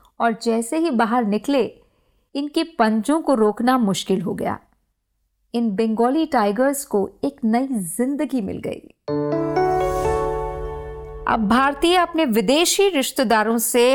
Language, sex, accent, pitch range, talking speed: Hindi, female, native, 220-305 Hz, 115 wpm